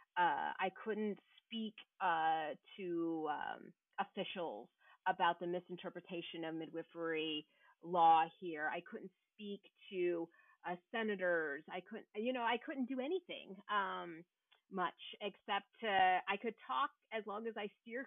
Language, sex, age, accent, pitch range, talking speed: English, female, 30-49, American, 180-225 Hz, 135 wpm